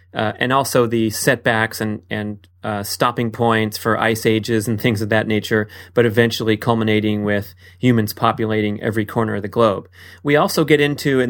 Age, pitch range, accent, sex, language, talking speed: 30-49, 110-135 Hz, American, male, English, 180 wpm